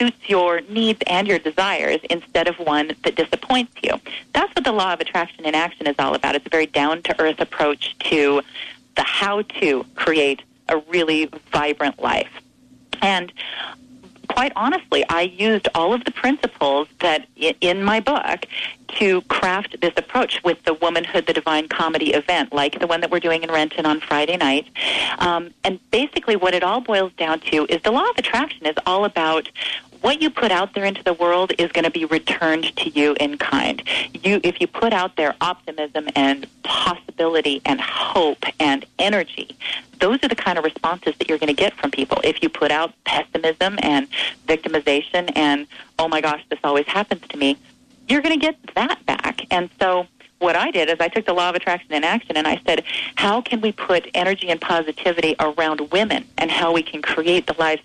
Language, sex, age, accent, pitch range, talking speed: English, female, 40-59, American, 155-205 Hz, 190 wpm